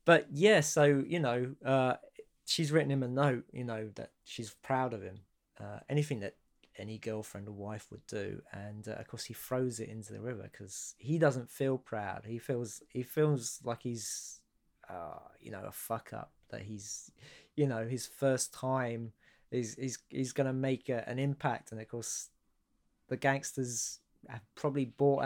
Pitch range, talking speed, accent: 110-135 Hz, 180 wpm, British